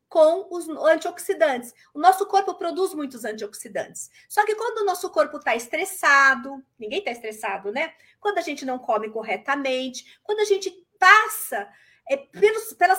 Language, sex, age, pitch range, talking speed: Portuguese, female, 50-69, 260-375 Hz, 150 wpm